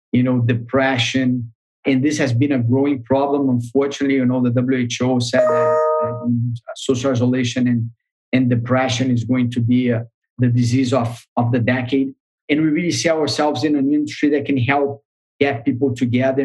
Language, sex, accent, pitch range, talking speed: English, male, Brazilian, 120-140 Hz, 170 wpm